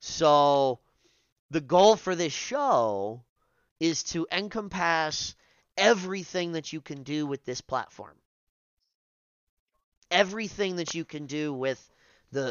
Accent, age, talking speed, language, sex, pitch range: American, 30-49, 115 wpm, English, male, 120-160 Hz